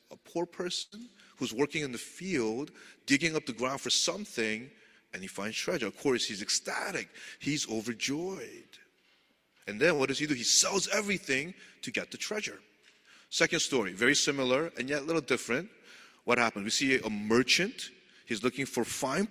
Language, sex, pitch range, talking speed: English, male, 105-145 Hz, 175 wpm